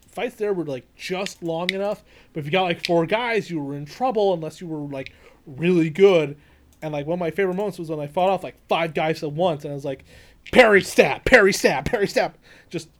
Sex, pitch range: male, 145-190 Hz